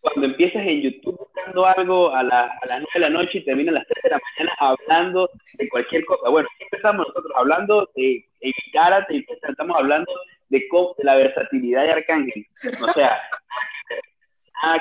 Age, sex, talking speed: 30-49, male, 180 wpm